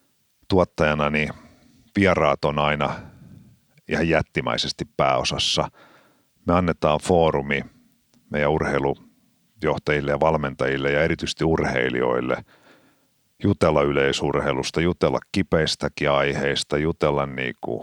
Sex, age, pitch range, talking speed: male, 50-69, 70-80 Hz, 90 wpm